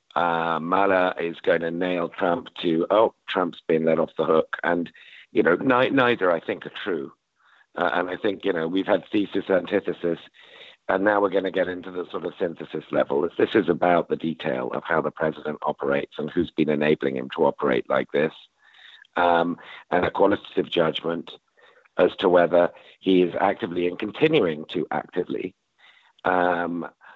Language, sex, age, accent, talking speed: English, male, 50-69, British, 180 wpm